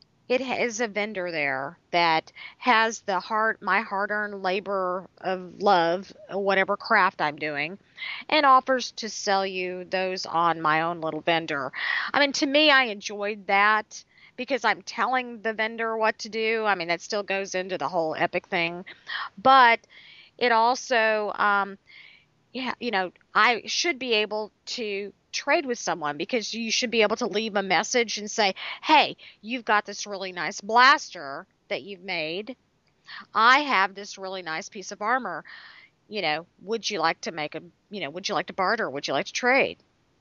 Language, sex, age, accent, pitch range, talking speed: English, female, 40-59, American, 185-235 Hz, 180 wpm